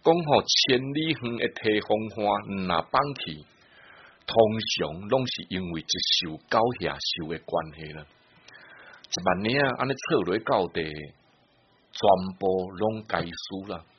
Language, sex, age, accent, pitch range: Chinese, male, 60-79, Malaysian, 85-130 Hz